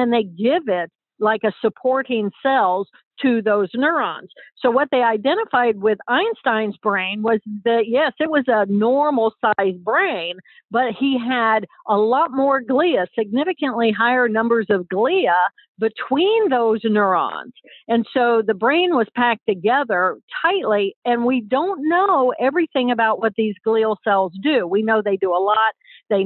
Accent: American